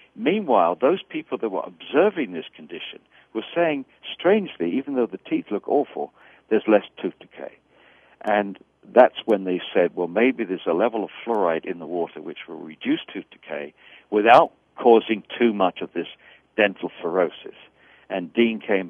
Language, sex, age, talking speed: English, male, 60-79, 165 wpm